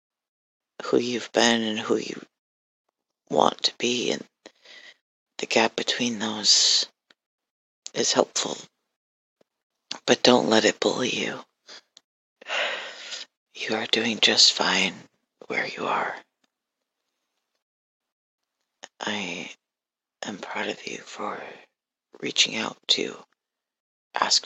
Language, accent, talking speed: English, American, 100 wpm